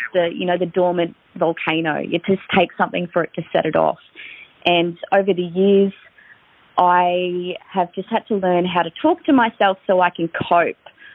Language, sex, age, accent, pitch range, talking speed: English, female, 20-39, Australian, 155-180 Hz, 190 wpm